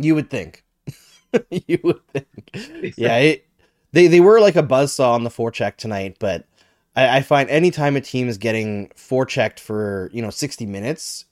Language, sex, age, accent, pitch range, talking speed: English, male, 20-39, American, 110-150 Hz, 180 wpm